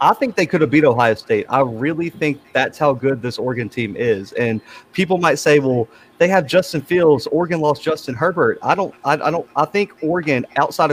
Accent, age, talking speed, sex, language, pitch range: American, 30-49, 220 wpm, male, English, 130-165 Hz